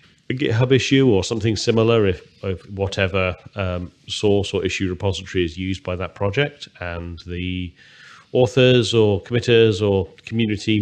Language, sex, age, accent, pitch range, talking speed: English, male, 40-59, British, 90-110 Hz, 145 wpm